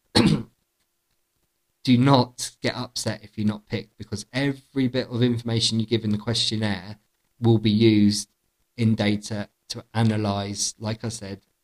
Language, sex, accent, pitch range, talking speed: English, male, British, 100-115 Hz, 145 wpm